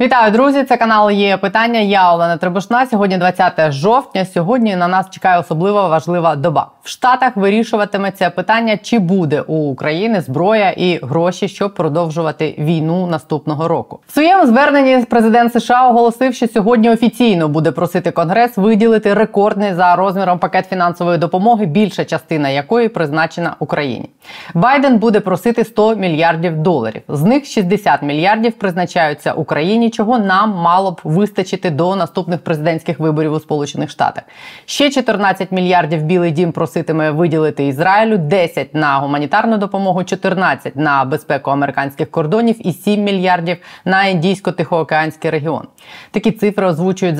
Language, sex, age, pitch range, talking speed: Ukrainian, female, 20-39, 165-215 Hz, 140 wpm